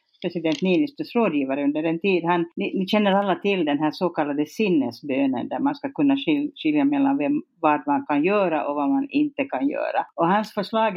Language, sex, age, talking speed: Swedish, female, 50-69, 200 wpm